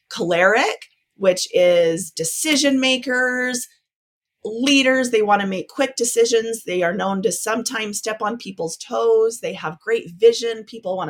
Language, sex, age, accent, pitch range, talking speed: English, female, 30-49, American, 175-250 Hz, 145 wpm